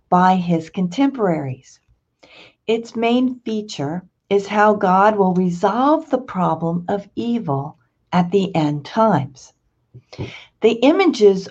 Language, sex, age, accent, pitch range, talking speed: English, female, 50-69, American, 150-205 Hz, 110 wpm